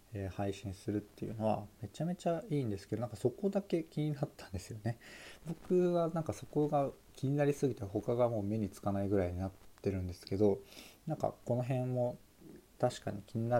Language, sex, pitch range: Japanese, male, 100-130 Hz